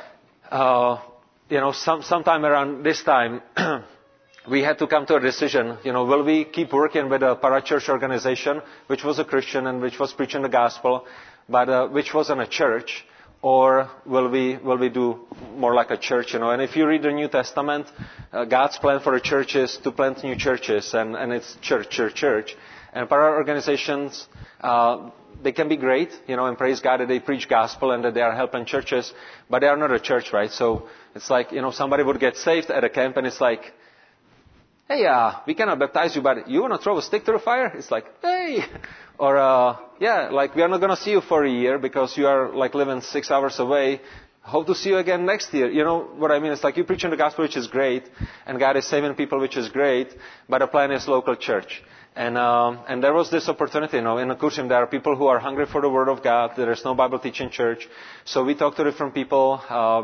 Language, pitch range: English, 125-145 Hz